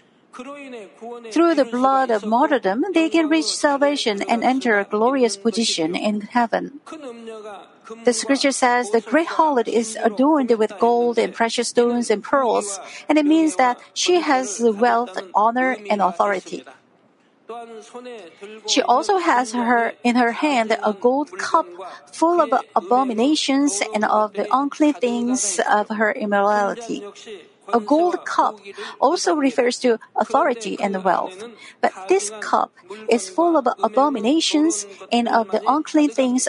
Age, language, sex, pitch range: 50-69, Korean, female, 225-285 Hz